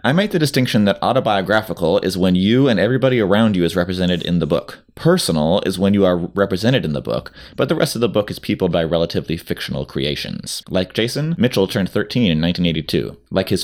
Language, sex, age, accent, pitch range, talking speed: English, male, 30-49, American, 85-115 Hz, 210 wpm